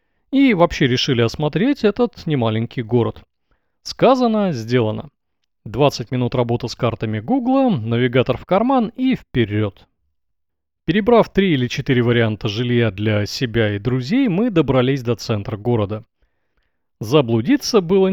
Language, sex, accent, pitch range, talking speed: Russian, male, native, 115-185 Hz, 125 wpm